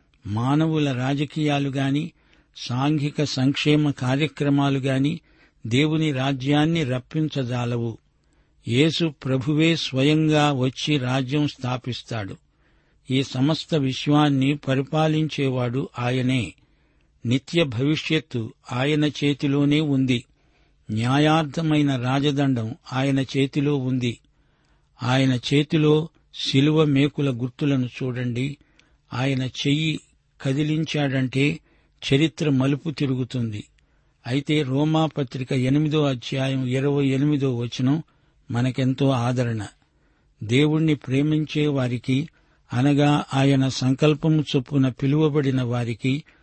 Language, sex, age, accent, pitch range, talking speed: Telugu, male, 60-79, native, 130-150 Hz, 75 wpm